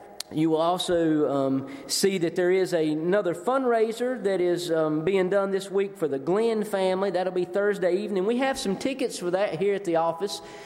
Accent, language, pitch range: American, English, 165-225 Hz